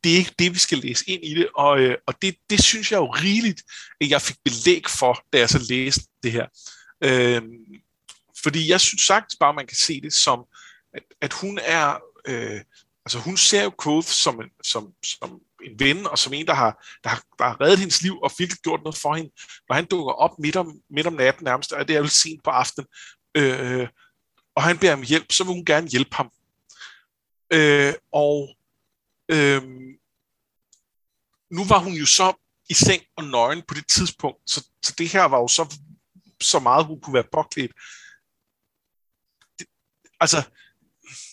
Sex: male